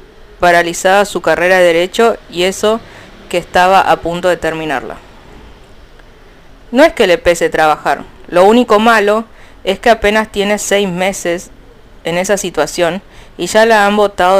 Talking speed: 150 wpm